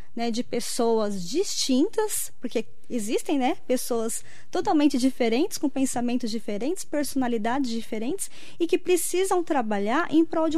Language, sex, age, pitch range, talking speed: Portuguese, female, 20-39, 215-295 Hz, 125 wpm